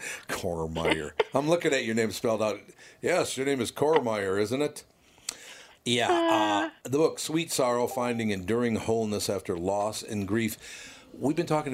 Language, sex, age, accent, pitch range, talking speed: English, male, 60-79, American, 100-125 Hz, 160 wpm